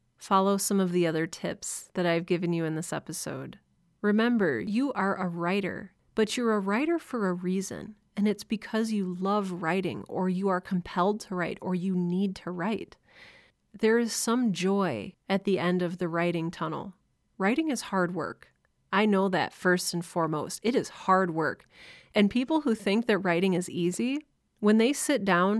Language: English